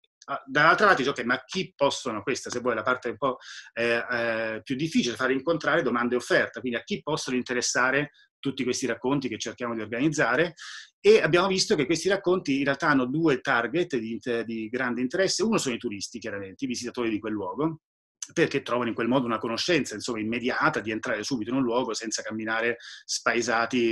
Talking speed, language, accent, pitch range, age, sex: 200 wpm, Italian, native, 120-155 Hz, 30-49, male